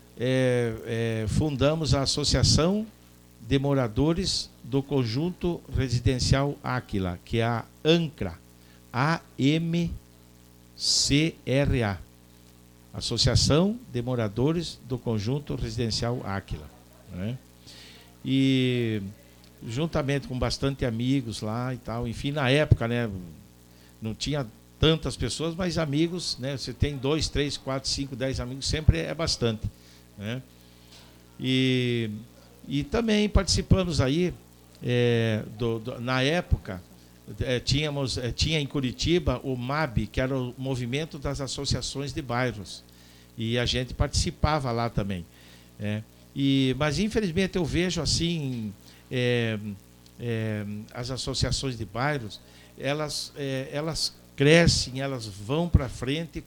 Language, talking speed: Portuguese, 115 wpm